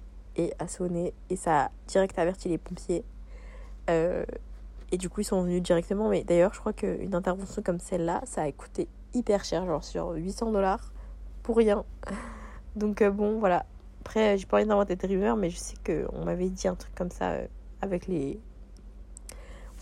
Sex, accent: female, French